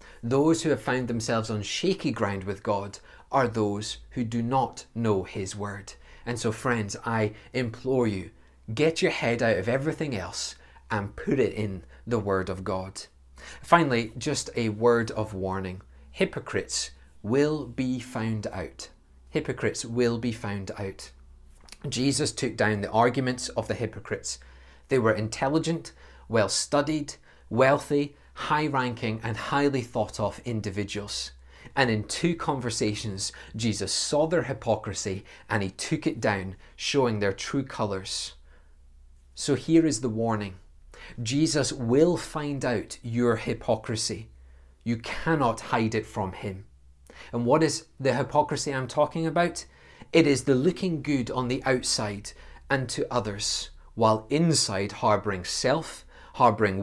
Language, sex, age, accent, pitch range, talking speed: English, male, 30-49, British, 100-135 Hz, 140 wpm